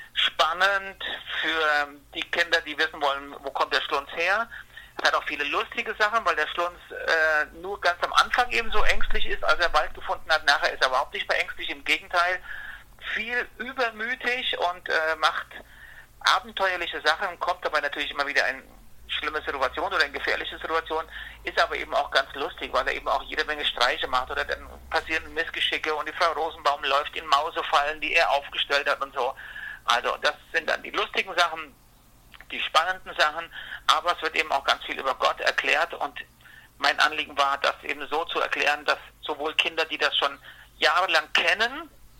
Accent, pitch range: German, 150-185 Hz